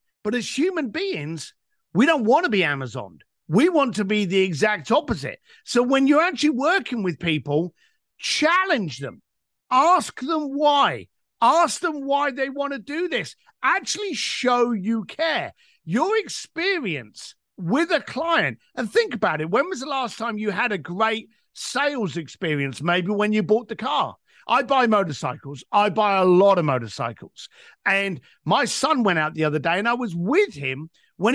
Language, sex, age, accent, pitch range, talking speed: English, male, 50-69, British, 190-290 Hz, 170 wpm